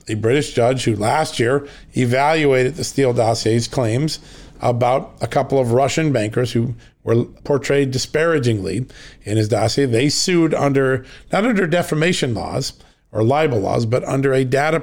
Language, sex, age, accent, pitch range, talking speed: English, male, 40-59, American, 125-155 Hz, 155 wpm